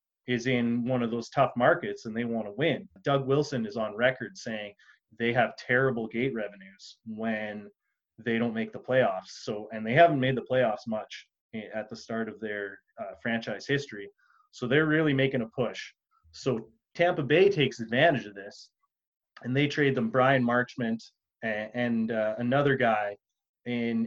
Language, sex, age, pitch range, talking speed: English, male, 30-49, 115-135 Hz, 175 wpm